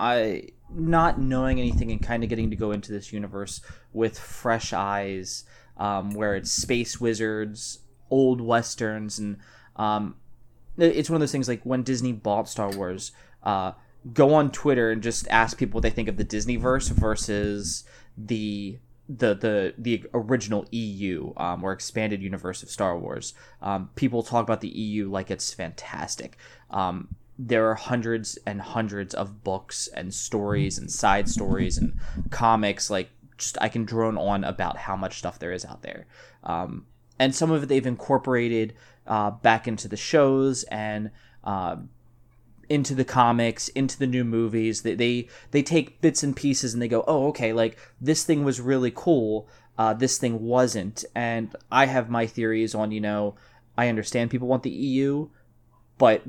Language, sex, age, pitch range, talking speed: English, male, 20-39, 105-125 Hz, 175 wpm